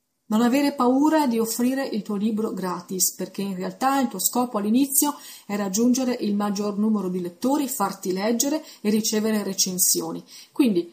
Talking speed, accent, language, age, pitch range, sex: 160 wpm, native, Italian, 30-49, 190-250 Hz, female